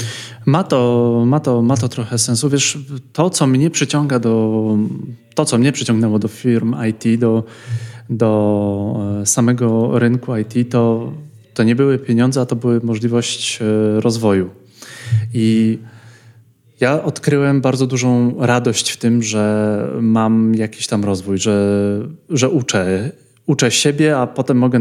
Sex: male